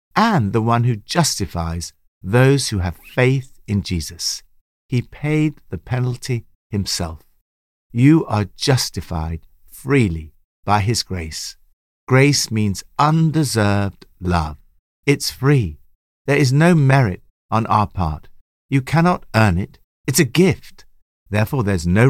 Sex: male